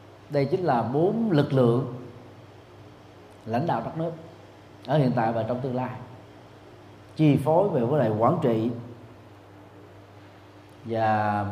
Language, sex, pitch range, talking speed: Vietnamese, male, 100-125 Hz, 130 wpm